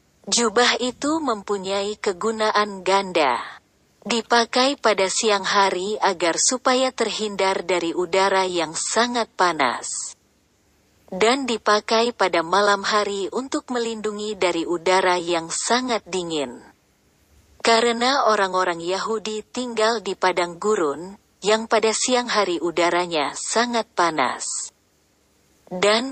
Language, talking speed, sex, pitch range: Indonesian, 100 wpm, female, 185-230 Hz